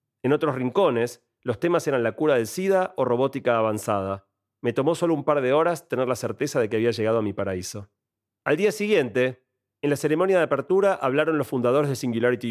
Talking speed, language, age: 205 wpm, Spanish, 40-59